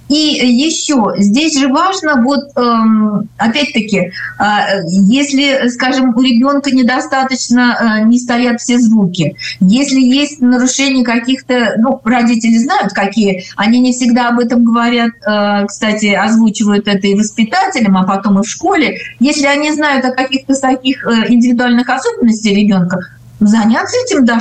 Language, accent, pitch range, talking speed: Russian, native, 210-275 Hz, 130 wpm